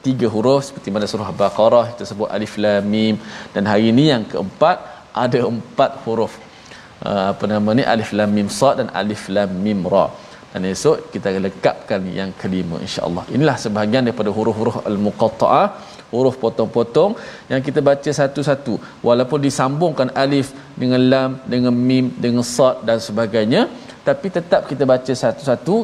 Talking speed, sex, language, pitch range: 155 wpm, male, Malayalam, 105-140 Hz